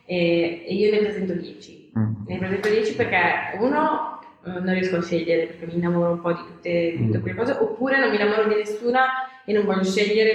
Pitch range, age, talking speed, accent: 185-210 Hz, 20-39, 210 wpm, native